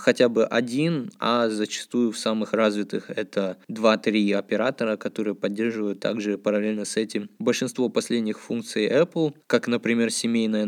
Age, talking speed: 20-39, 135 wpm